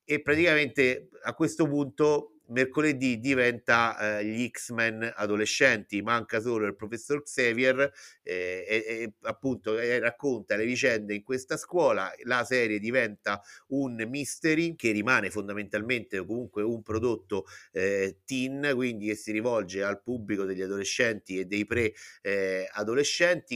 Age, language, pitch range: 50-69, Italian, 105-130 Hz